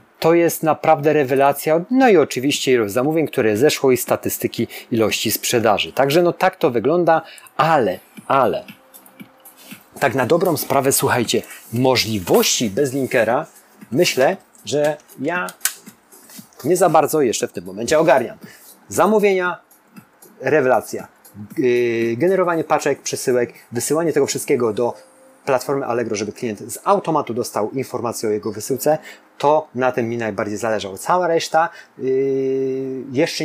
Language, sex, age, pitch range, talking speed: Polish, male, 30-49, 115-155 Hz, 125 wpm